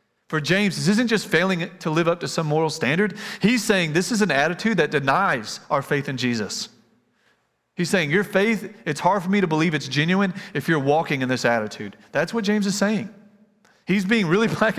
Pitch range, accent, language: 150-195 Hz, American, English